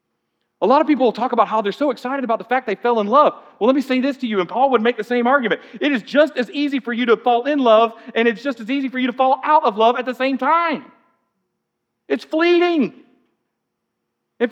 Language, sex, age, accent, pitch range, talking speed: English, male, 40-59, American, 220-280 Hz, 255 wpm